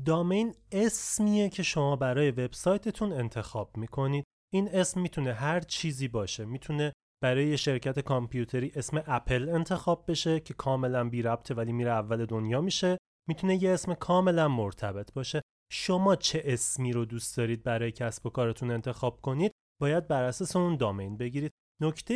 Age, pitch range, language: 30-49, 120-170 Hz, Persian